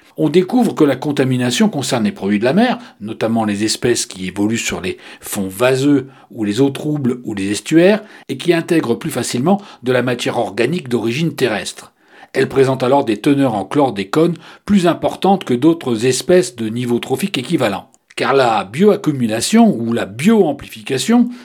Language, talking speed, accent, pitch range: French, 175 wpm, French, 120-180 Hz